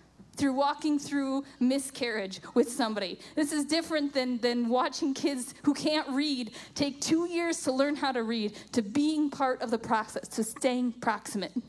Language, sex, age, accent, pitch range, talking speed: English, female, 10-29, American, 225-290 Hz, 170 wpm